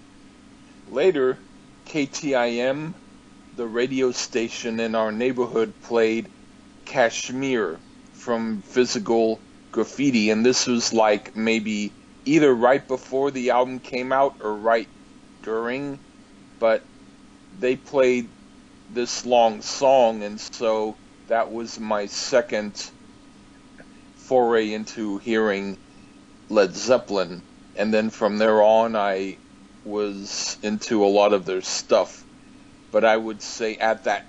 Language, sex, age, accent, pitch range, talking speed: English, male, 50-69, American, 105-125 Hz, 110 wpm